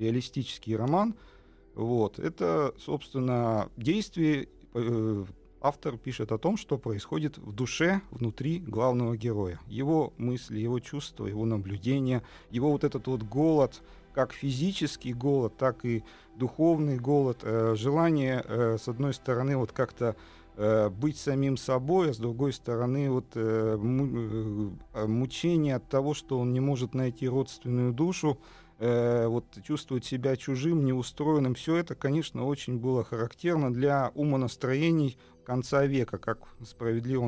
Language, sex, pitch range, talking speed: Russian, male, 115-140 Hz, 130 wpm